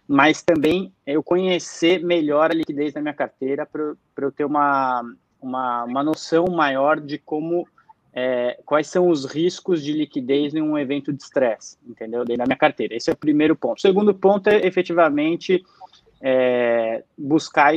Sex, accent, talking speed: male, Brazilian, 165 wpm